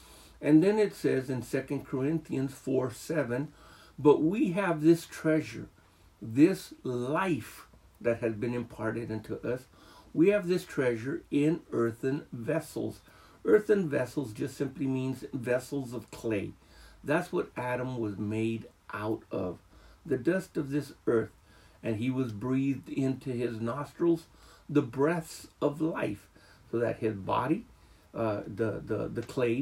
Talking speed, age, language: 140 wpm, 60-79, English